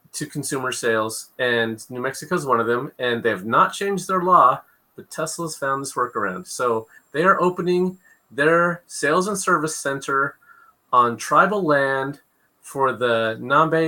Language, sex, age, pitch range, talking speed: English, male, 30-49, 125-175 Hz, 160 wpm